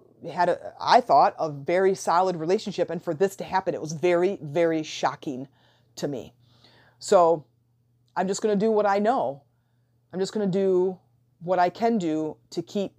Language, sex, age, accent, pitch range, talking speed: English, female, 30-49, American, 150-195 Hz, 185 wpm